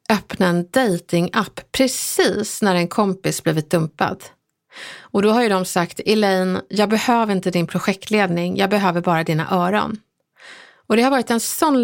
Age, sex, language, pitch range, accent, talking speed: 30-49, female, Swedish, 180-230 Hz, native, 165 wpm